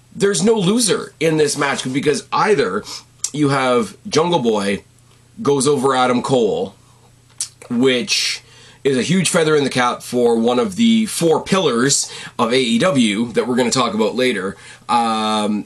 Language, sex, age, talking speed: English, male, 30-49, 155 wpm